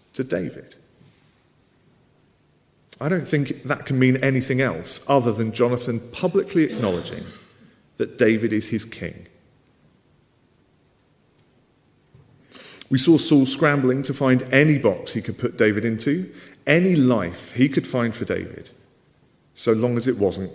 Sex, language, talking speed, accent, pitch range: male, English, 130 wpm, British, 110-140 Hz